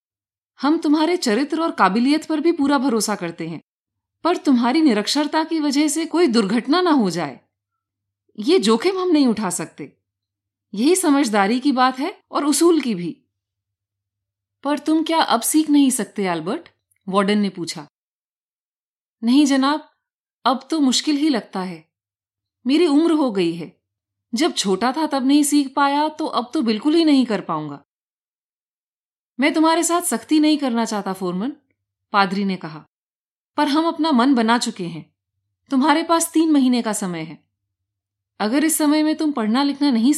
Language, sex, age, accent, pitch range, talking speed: Hindi, female, 30-49, native, 190-300 Hz, 165 wpm